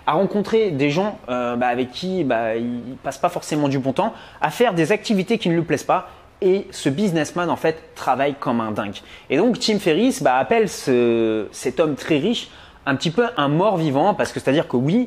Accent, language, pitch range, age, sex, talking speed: French, French, 145-210 Hz, 30-49, male, 230 wpm